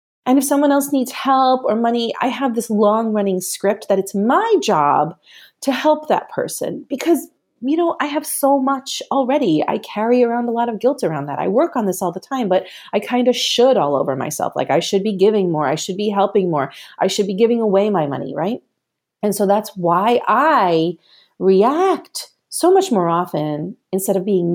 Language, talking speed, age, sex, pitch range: English, 210 wpm, 30-49, female, 180-275 Hz